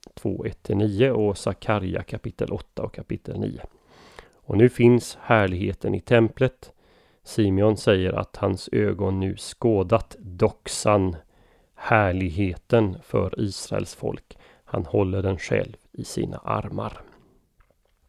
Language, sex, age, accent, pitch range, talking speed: Swedish, male, 30-49, native, 100-120 Hz, 110 wpm